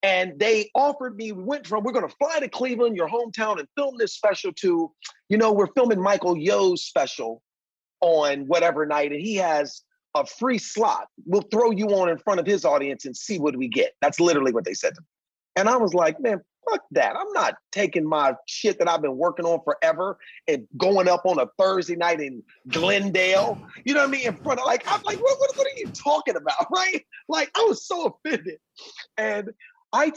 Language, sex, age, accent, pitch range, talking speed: English, male, 40-59, American, 170-275 Hz, 220 wpm